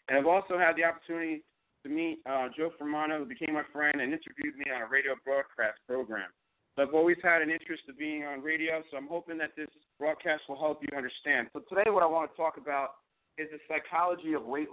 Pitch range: 135-170 Hz